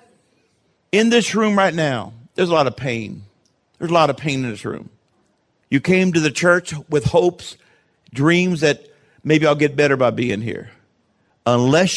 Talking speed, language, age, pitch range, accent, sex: 175 wpm, English, 50-69, 140-195 Hz, American, male